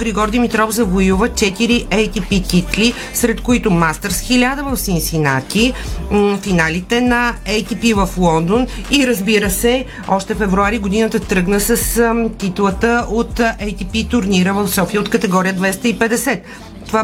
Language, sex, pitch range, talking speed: Bulgarian, female, 185-230 Hz, 125 wpm